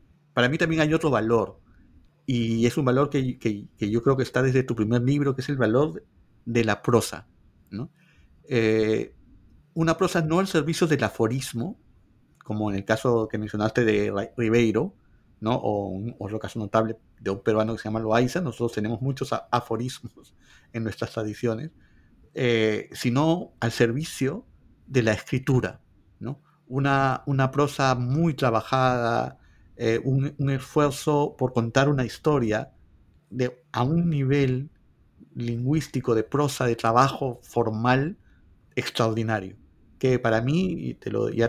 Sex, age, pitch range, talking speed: male, 50-69, 110-135 Hz, 150 wpm